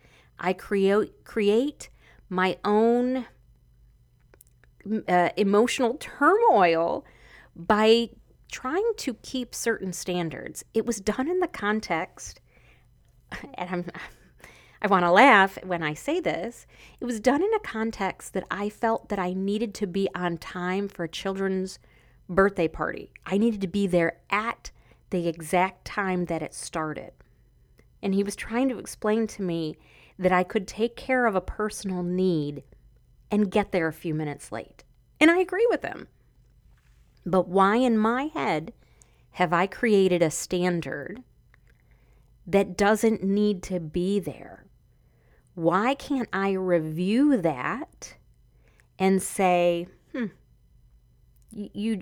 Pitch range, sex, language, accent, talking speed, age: 175-225 Hz, female, English, American, 135 wpm, 40-59